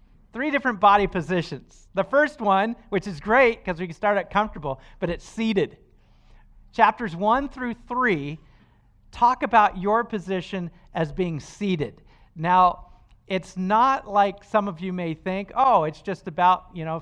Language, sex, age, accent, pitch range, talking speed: English, male, 40-59, American, 145-195 Hz, 160 wpm